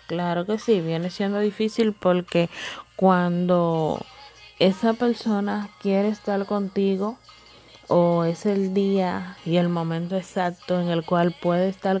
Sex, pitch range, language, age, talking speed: female, 175-220 Hz, Spanish, 20-39, 130 wpm